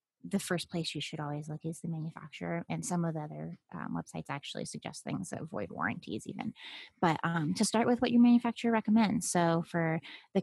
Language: English